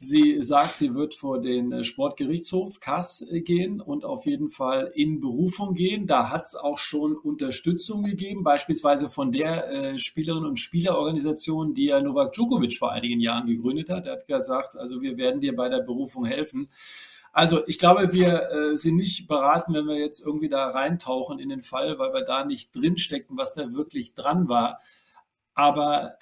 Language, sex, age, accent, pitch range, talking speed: German, male, 50-69, German, 150-235 Hz, 175 wpm